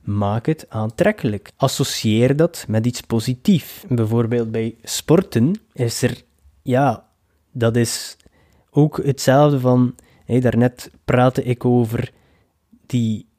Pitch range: 115-140 Hz